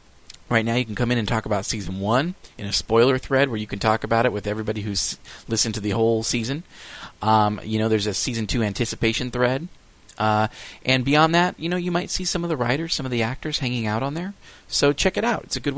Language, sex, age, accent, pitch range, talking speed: English, male, 30-49, American, 105-130 Hz, 250 wpm